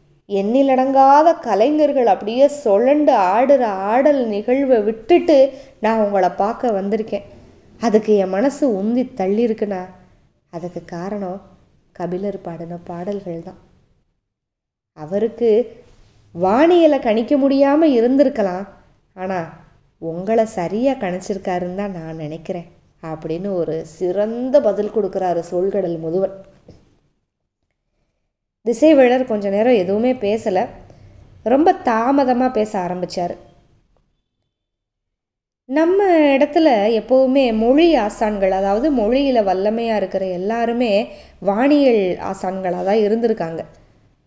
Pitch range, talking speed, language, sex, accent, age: 185-255 Hz, 90 wpm, Tamil, female, native, 20-39